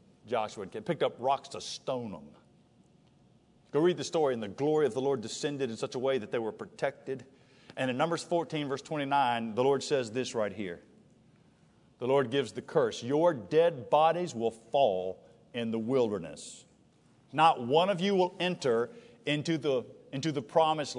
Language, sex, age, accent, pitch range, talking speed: English, male, 50-69, American, 135-225 Hz, 175 wpm